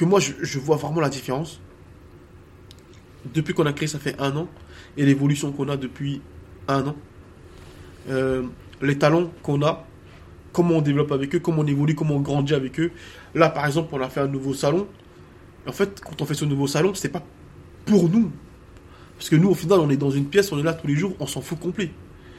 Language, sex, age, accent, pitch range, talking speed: French, male, 20-39, French, 120-175 Hz, 215 wpm